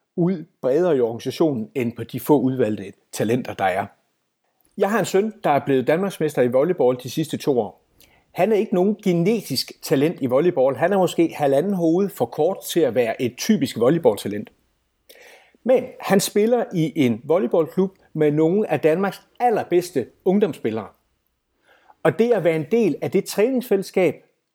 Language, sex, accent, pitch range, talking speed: Danish, male, native, 145-205 Hz, 170 wpm